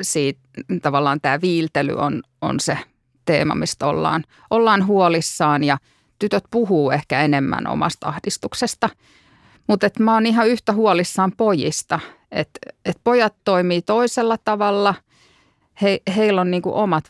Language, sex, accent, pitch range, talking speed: Finnish, female, native, 150-195 Hz, 130 wpm